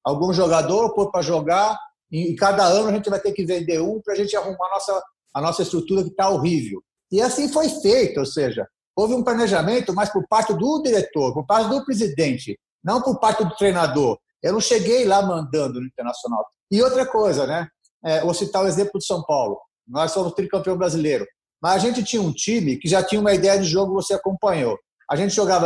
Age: 50-69